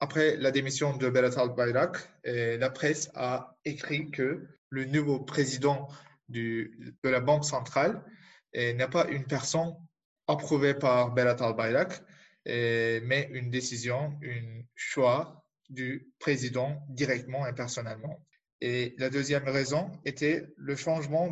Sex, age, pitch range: male, 20-39, 130-150 Hz